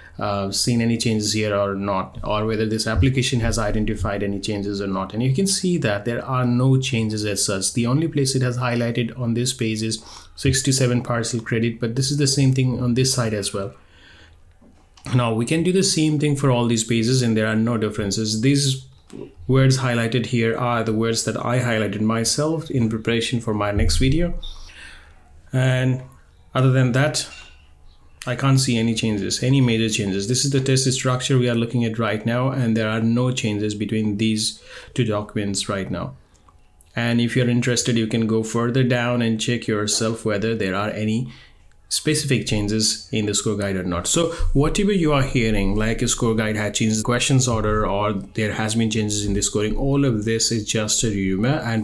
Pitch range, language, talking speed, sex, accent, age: 105-125 Hz, English, 200 wpm, male, Indian, 30-49